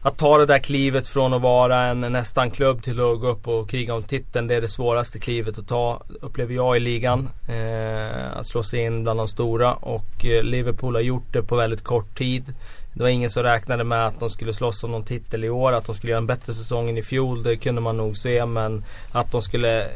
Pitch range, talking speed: 110-120 Hz, 245 wpm